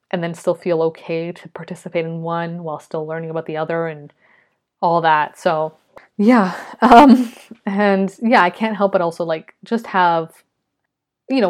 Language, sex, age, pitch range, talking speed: English, female, 20-39, 165-195 Hz, 170 wpm